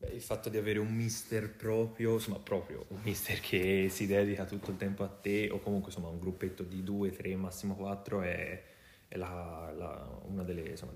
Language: Italian